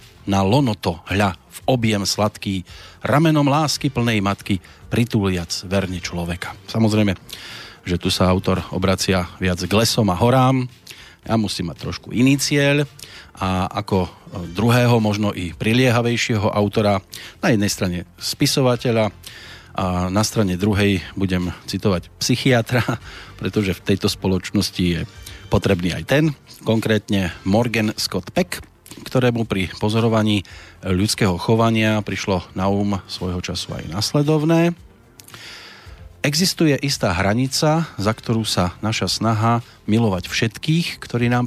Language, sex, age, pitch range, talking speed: Slovak, male, 40-59, 95-120 Hz, 120 wpm